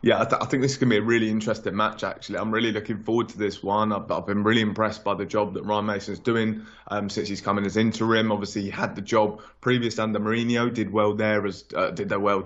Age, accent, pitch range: 20-39, British, 100-115 Hz